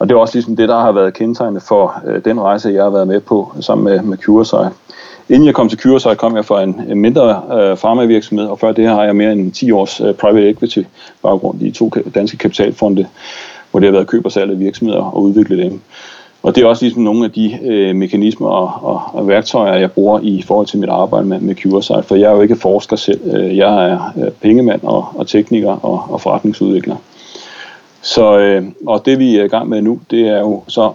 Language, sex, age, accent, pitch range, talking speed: Danish, male, 30-49, native, 95-110 Hz, 230 wpm